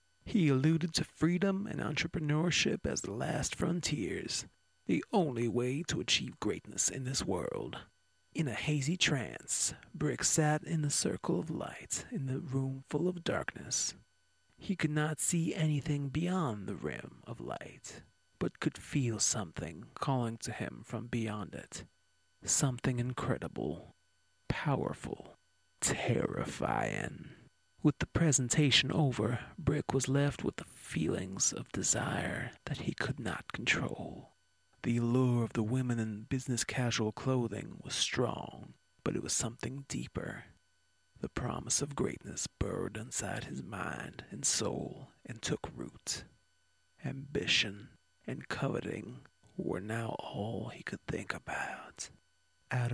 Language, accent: English, American